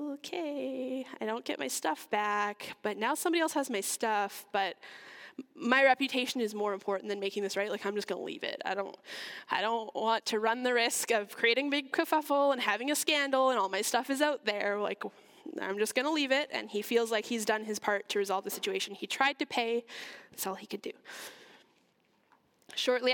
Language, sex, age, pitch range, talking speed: English, female, 10-29, 210-265 Hz, 215 wpm